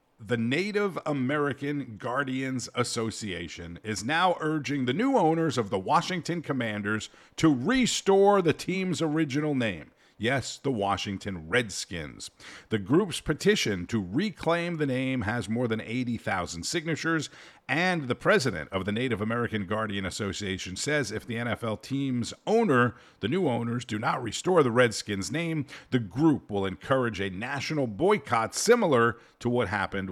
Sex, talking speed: male, 145 wpm